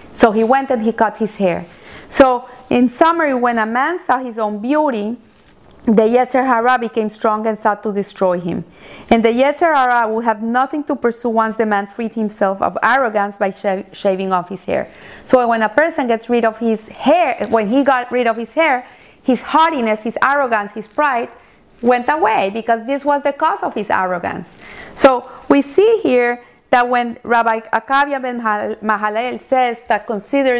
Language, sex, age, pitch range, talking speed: English, female, 30-49, 220-270 Hz, 185 wpm